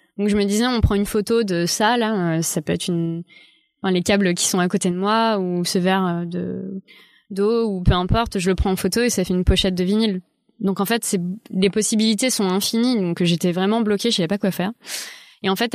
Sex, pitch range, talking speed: female, 185-220 Hz, 250 wpm